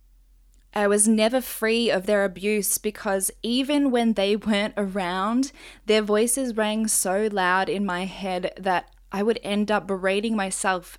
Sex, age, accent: female, 10-29, Australian